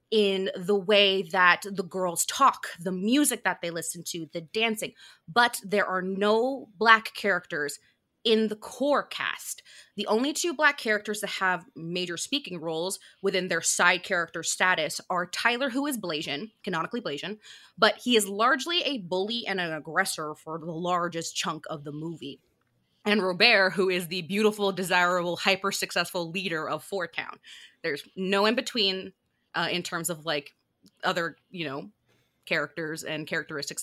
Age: 20-39